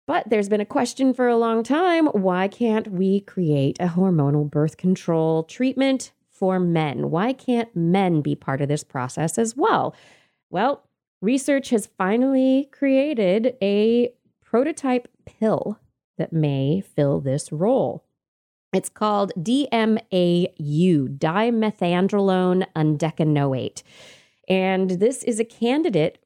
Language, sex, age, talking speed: English, female, 20-39, 120 wpm